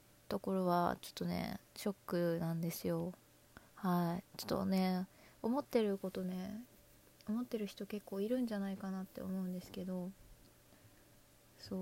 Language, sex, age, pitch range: Japanese, female, 20-39, 185-225 Hz